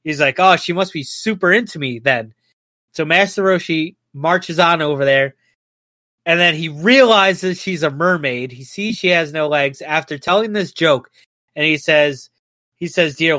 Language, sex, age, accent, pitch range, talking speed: English, male, 30-49, American, 150-195 Hz, 185 wpm